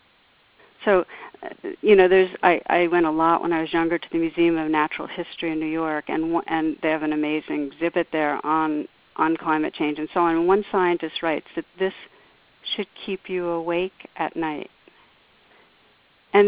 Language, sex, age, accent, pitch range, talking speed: English, female, 50-69, American, 165-195 Hz, 180 wpm